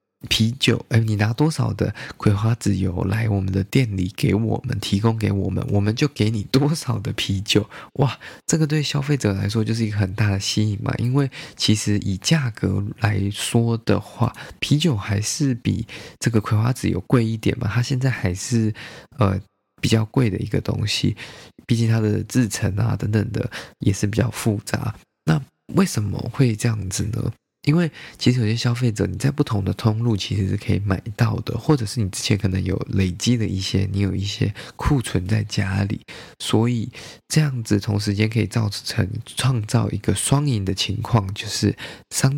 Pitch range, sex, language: 100-125 Hz, male, Chinese